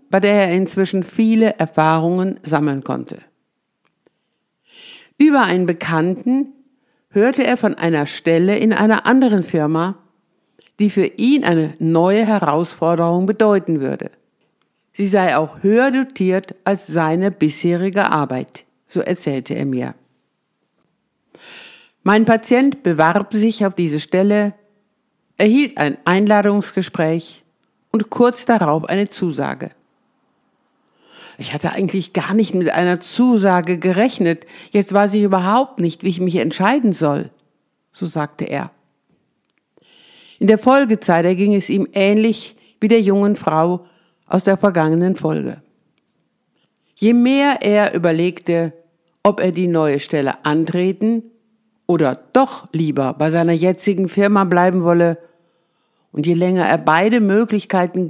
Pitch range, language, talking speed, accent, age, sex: 170-215 Hz, German, 120 wpm, German, 50-69, female